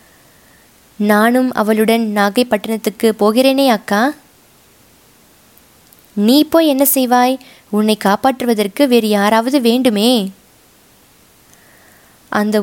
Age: 20-39